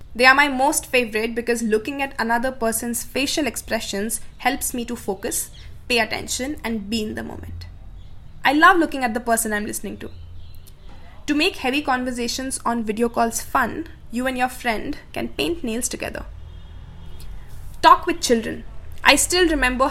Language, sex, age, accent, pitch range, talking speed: English, female, 20-39, Indian, 220-275 Hz, 165 wpm